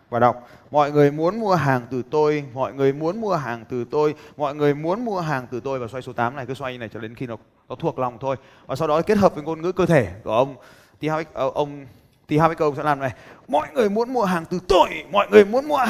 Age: 20-39